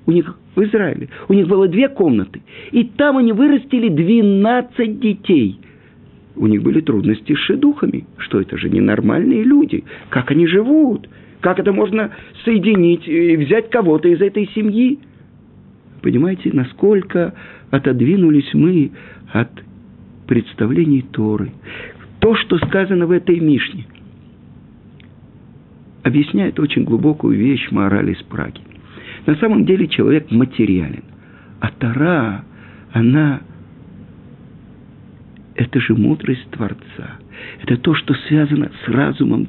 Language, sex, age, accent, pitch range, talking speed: Russian, male, 50-69, native, 135-220 Hz, 115 wpm